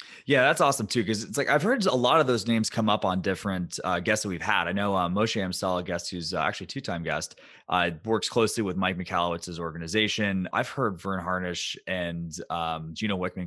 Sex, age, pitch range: male, 20-39, 90-110 Hz